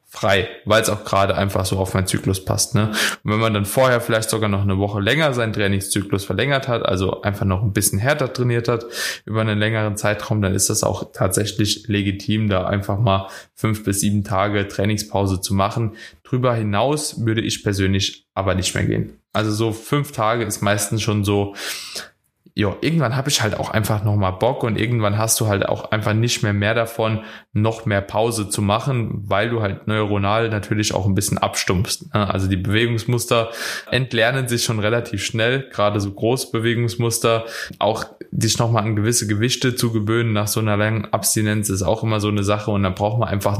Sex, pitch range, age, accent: male, 100-115 Hz, 20-39, German